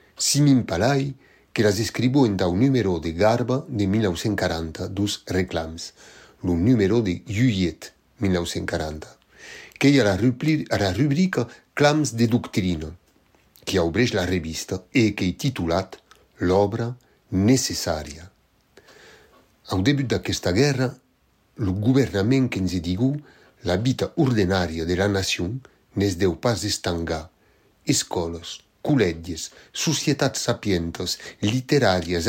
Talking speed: 120 wpm